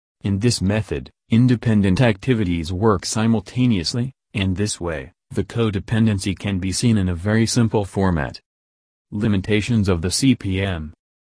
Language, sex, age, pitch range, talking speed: English, male, 30-49, 90-115 Hz, 130 wpm